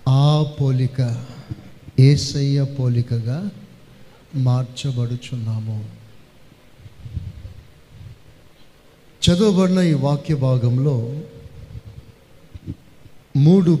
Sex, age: male, 50-69